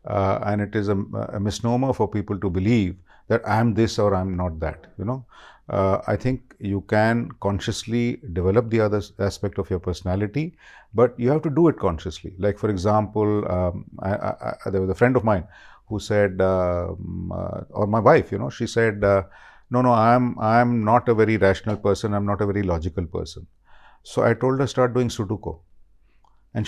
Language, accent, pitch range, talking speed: Hindi, native, 95-125 Hz, 205 wpm